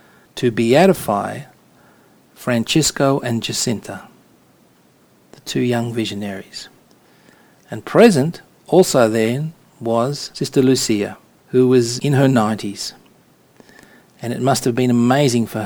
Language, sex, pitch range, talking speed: English, male, 110-130 Hz, 105 wpm